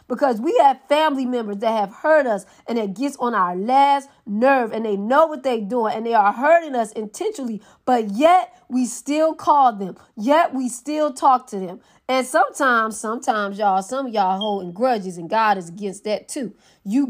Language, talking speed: English, 195 wpm